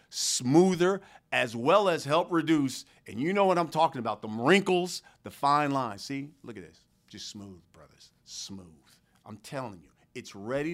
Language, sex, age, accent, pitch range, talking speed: English, male, 50-69, American, 120-170 Hz, 175 wpm